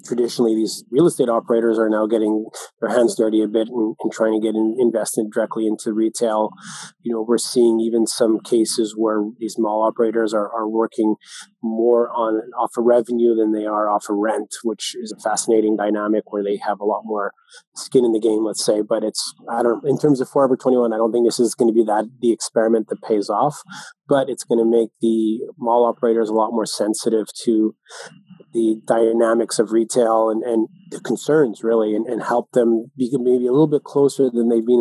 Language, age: English, 20-39